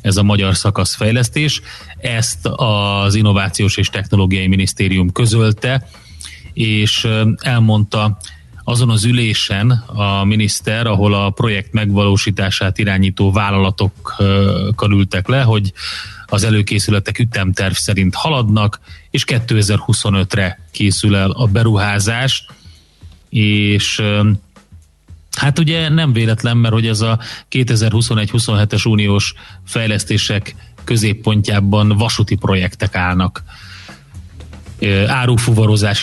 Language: Hungarian